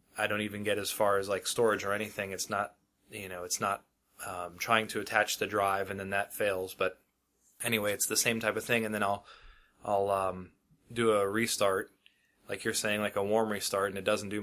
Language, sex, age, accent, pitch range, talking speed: English, male, 20-39, American, 95-110 Hz, 225 wpm